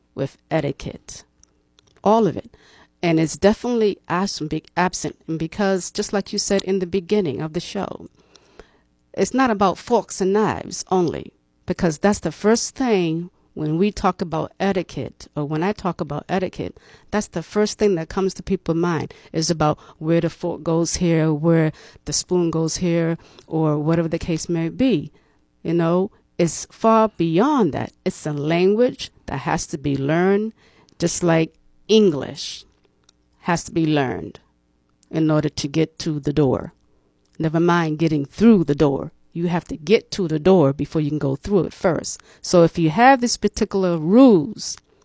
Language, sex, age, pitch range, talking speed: English, female, 50-69, 155-195 Hz, 170 wpm